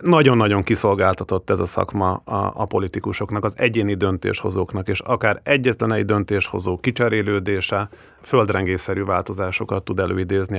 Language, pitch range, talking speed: English, 100-120 Hz, 115 wpm